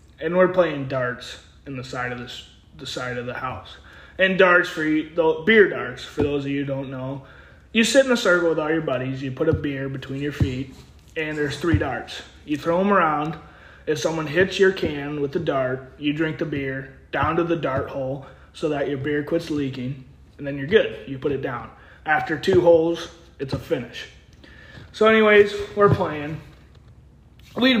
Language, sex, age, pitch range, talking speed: English, male, 20-39, 130-180 Hz, 205 wpm